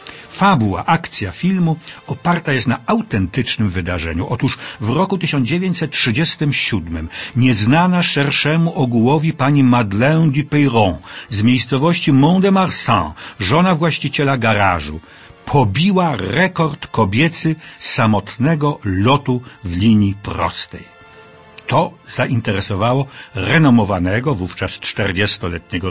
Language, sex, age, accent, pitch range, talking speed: Polish, male, 50-69, native, 105-150 Hz, 95 wpm